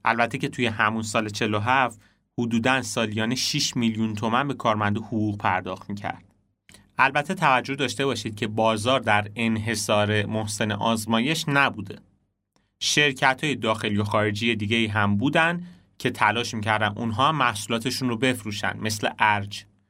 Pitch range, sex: 105-130 Hz, male